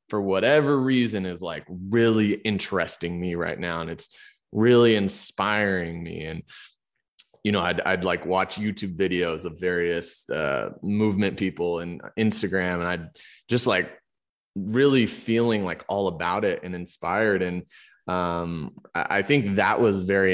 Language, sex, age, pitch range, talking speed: English, male, 20-39, 85-100 Hz, 150 wpm